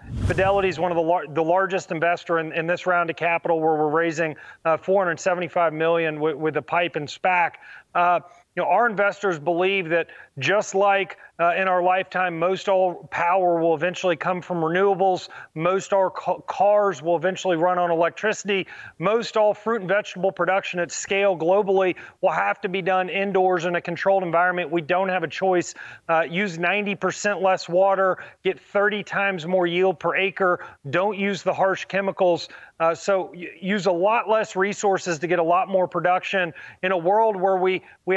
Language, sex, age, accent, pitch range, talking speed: English, male, 30-49, American, 170-195 Hz, 180 wpm